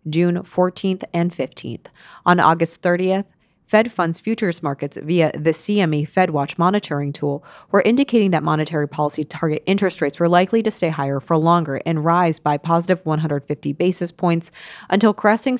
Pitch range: 155-185 Hz